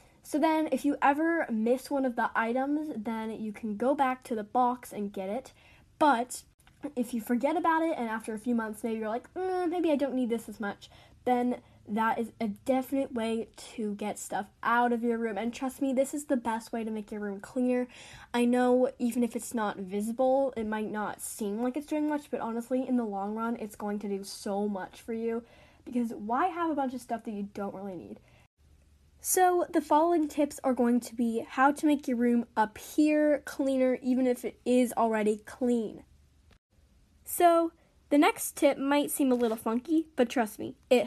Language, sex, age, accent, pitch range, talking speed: English, female, 10-29, American, 225-295 Hz, 210 wpm